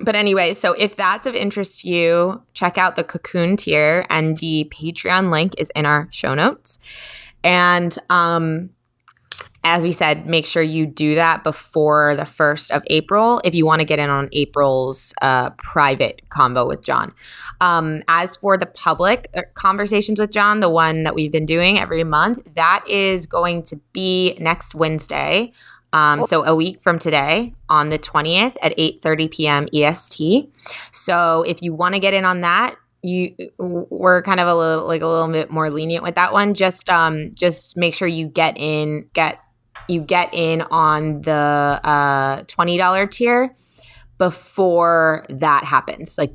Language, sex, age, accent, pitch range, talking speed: English, female, 20-39, American, 150-180 Hz, 175 wpm